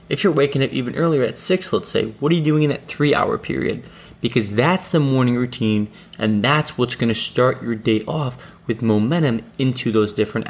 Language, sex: English, male